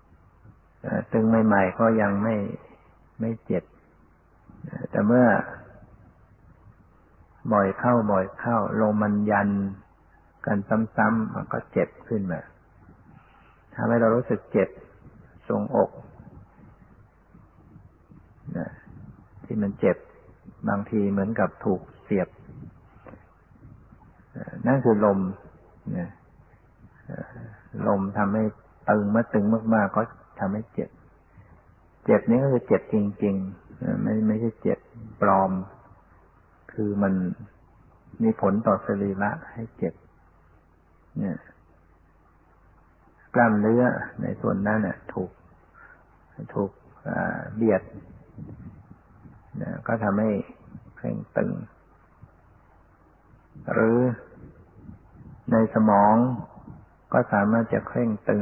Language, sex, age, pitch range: Thai, male, 60-79, 85-110 Hz